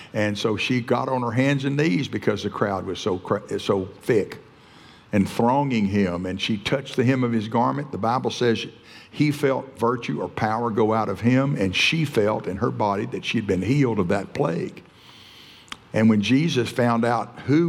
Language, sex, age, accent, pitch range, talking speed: English, male, 60-79, American, 105-135 Hz, 195 wpm